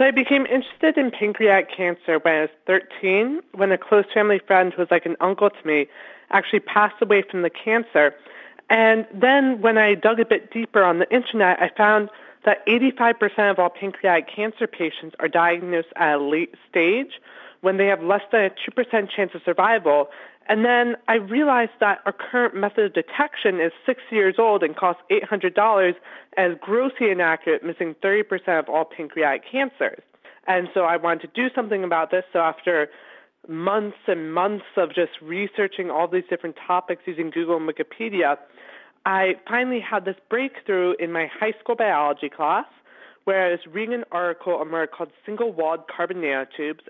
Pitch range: 165-220 Hz